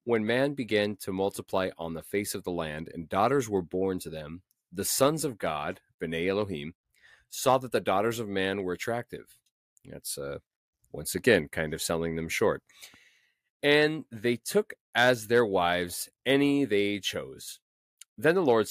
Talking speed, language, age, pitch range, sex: 165 wpm, English, 30-49, 90-115 Hz, male